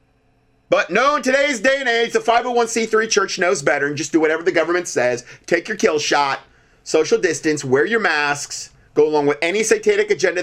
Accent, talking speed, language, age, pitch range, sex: American, 195 wpm, English, 30-49, 125-190 Hz, male